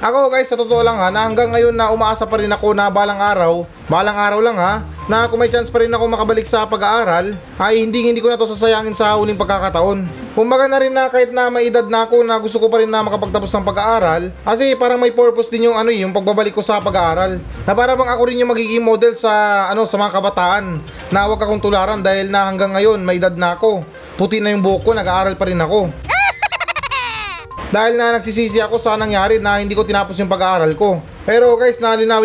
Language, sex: Filipino, male